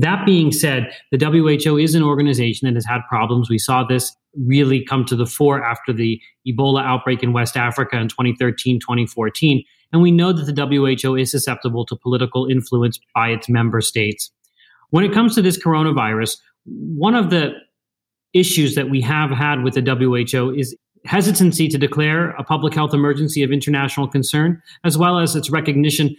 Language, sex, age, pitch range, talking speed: English, male, 30-49, 130-150 Hz, 175 wpm